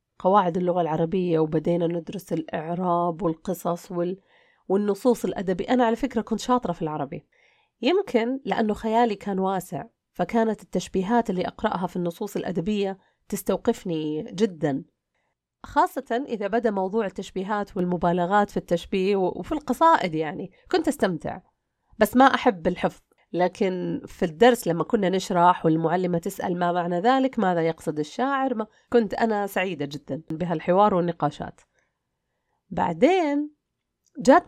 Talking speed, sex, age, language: 120 wpm, female, 30-49, Arabic